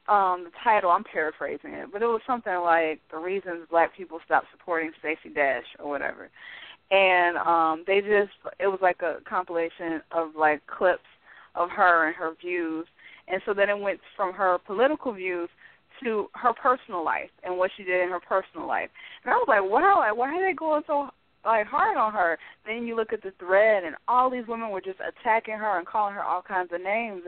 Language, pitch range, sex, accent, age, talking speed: English, 180-250 Hz, female, American, 20-39, 210 wpm